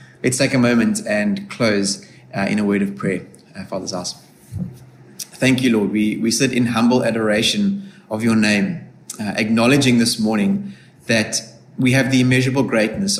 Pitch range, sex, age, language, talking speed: 110-135 Hz, male, 20-39, English, 170 wpm